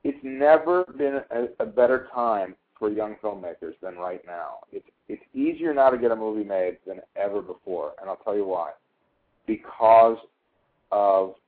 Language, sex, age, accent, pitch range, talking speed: English, male, 50-69, American, 110-155 Hz, 165 wpm